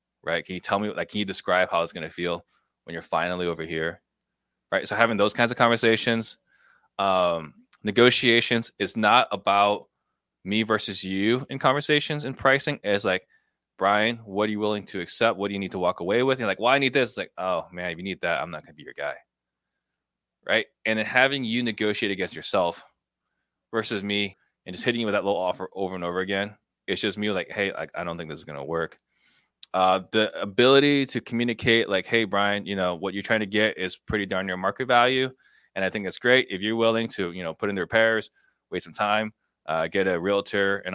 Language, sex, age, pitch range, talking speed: English, male, 20-39, 95-115 Hz, 230 wpm